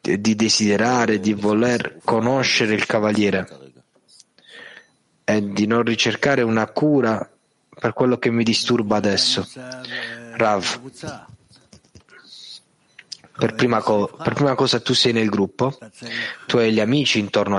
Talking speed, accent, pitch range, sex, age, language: 115 wpm, native, 100-120 Hz, male, 30-49, Italian